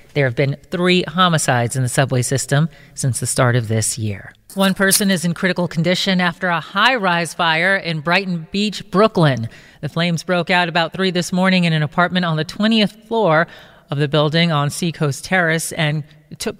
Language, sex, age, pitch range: English, female, 40-59, 150-195 Hz